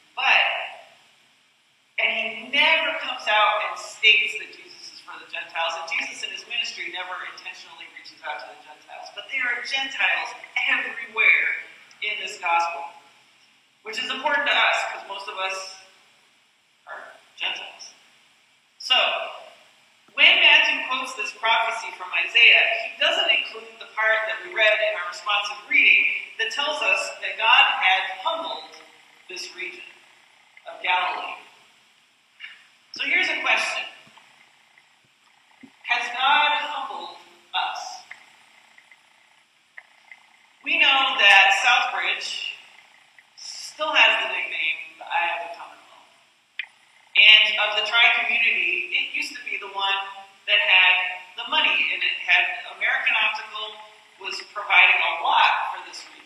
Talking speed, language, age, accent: 130 wpm, English, 40-59, American